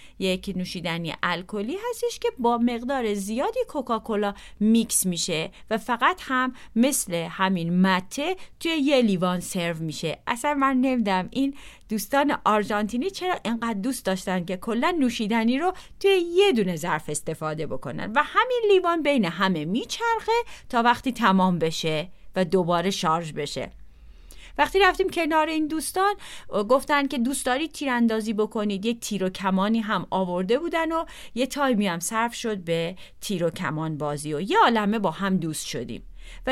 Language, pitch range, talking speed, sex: Persian, 180-280 Hz, 150 wpm, female